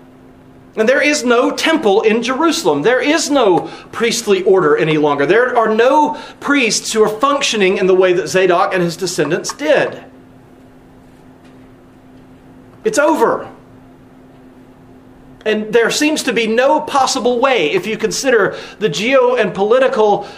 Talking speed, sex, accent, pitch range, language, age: 140 wpm, male, American, 185-265 Hz, English, 40-59